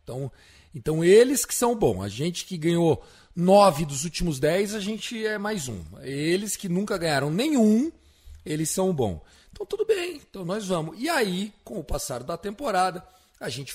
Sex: male